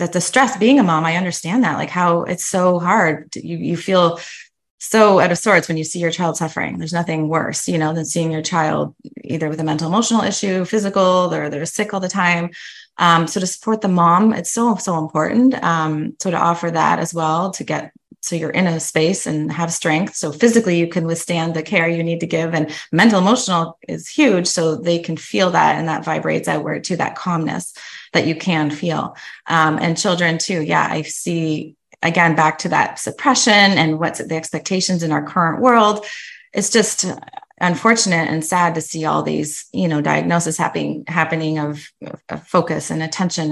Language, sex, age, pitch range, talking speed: English, female, 20-39, 165-205 Hz, 205 wpm